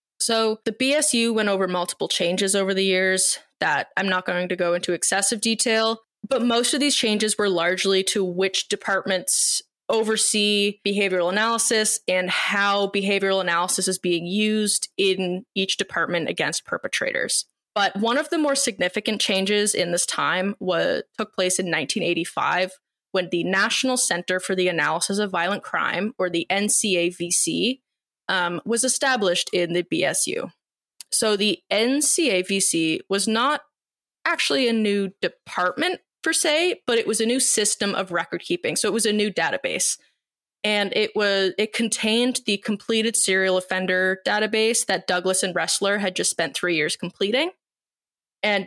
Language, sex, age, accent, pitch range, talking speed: English, female, 20-39, American, 185-225 Hz, 155 wpm